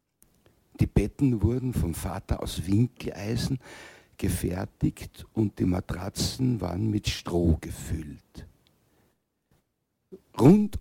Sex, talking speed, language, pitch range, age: male, 90 wpm, German, 85-120 Hz, 60-79